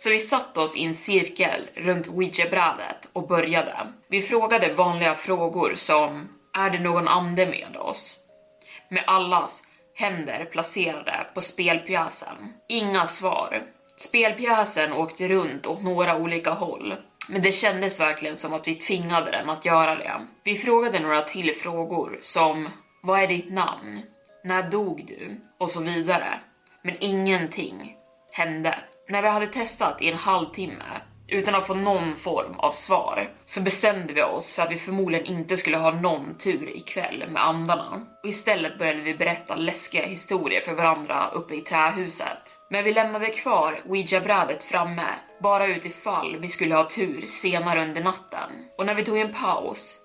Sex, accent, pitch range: female, native, 165-200 Hz